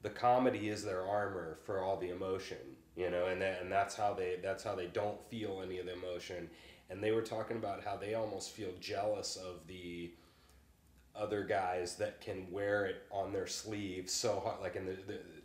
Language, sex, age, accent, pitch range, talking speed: English, male, 30-49, American, 90-110 Hz, 210 wpm